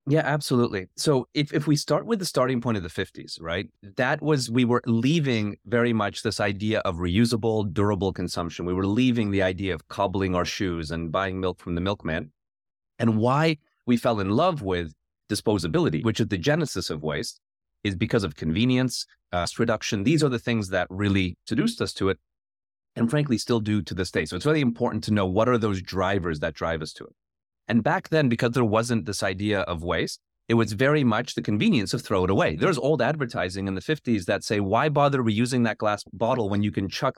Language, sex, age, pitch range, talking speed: English, male, 30-49, 95-125 Hz, 215 wpm